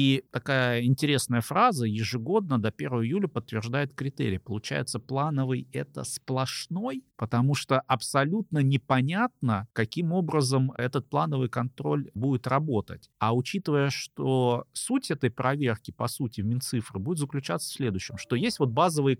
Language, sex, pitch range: Russian, male, 115-155 Hz